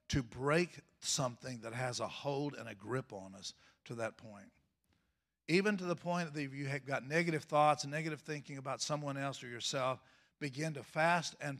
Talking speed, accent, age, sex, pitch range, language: 195 wpm, American, 50-69, male, 130-160 Hz, English